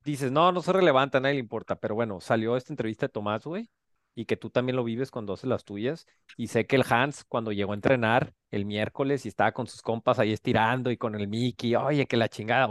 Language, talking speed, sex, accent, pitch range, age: Spanish, 250 wpm, male, Mexican, 120-145 Hz, 40-59